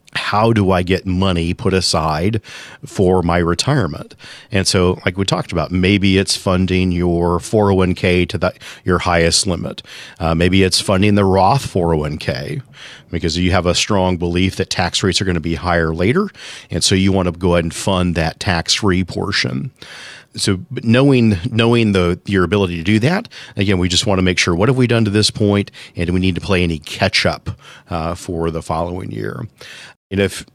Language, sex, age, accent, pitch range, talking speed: English, male, 40-59, American, 90-105 Hz, 185 wpm